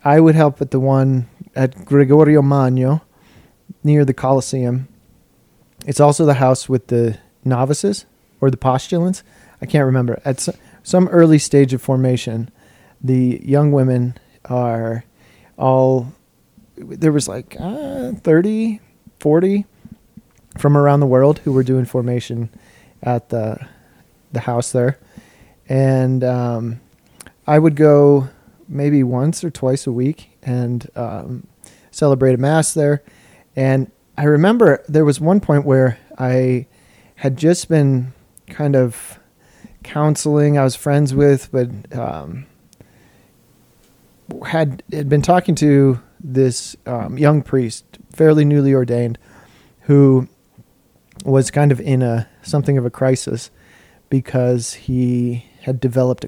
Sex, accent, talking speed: male, American, 125 wpm